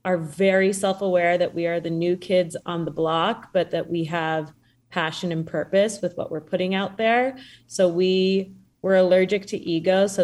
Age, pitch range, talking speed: 20-39, 160-180 Hz, 190 wpm